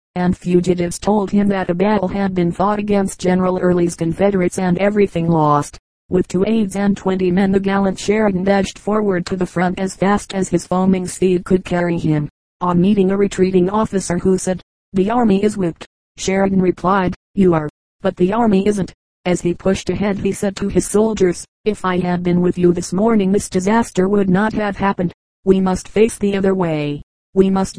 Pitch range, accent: 180-195 Hz, American